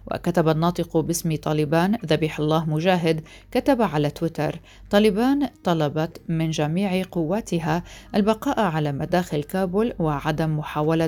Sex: female